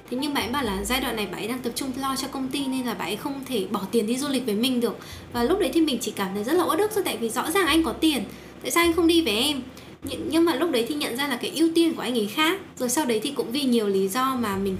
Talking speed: 335 wpm